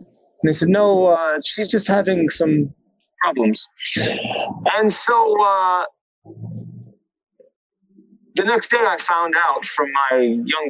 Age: 30-49